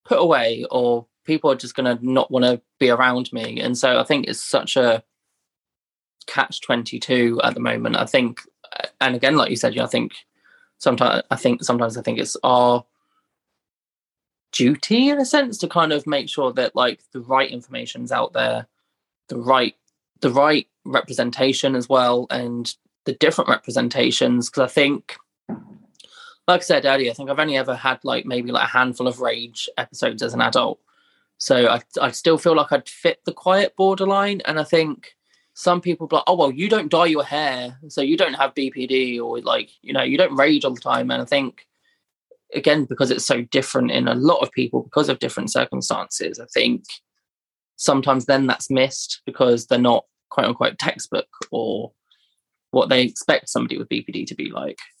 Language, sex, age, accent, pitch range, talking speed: English, male, 20-39, British, 125-170 Hz, 190 wpm